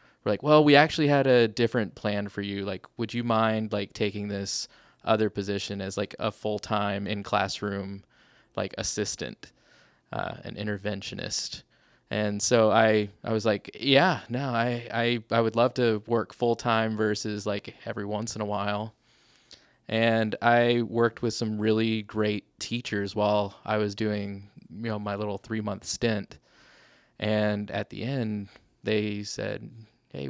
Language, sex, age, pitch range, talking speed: English, male, 20-39, 100-115 Hz, 160 wpm